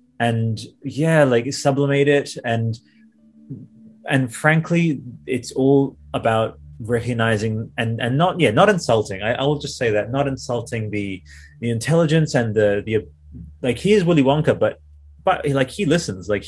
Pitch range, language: 110-140 Hz, English